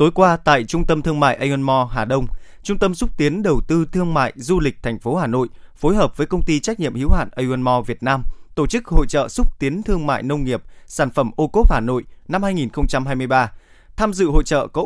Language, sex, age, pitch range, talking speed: Vietnamese, male, 20-39, 130-170 Hz, 265 wpm